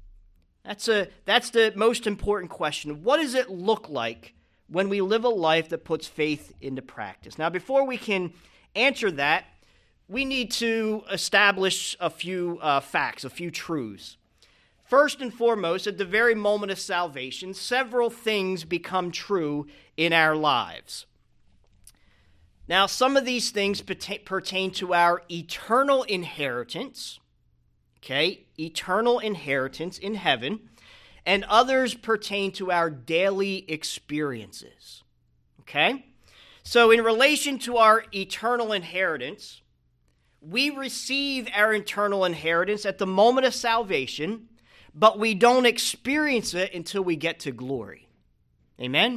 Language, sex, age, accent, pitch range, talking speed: English, male, 40-59, American, 160-230 Hz, 130 wpm